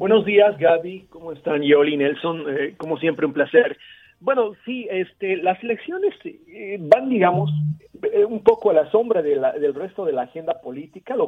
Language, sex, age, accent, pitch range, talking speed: Spanish, male, 40-59, Mexican, 130-170 Hz, 170 wpm